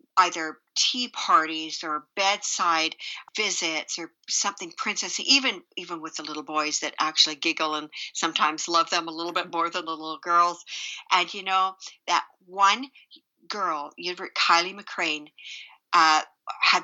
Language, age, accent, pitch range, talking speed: English, 50-69, American, 165-235 Hz, 145 wpm